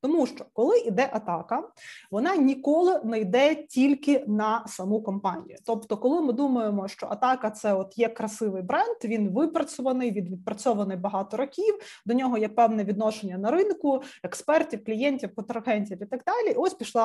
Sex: female